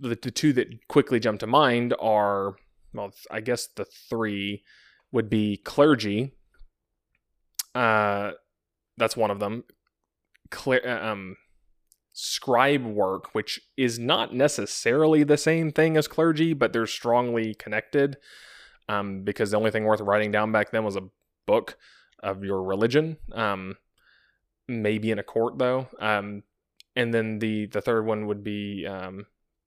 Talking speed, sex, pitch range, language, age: 145 wpm, male, 105-125 Hz, English, 20-39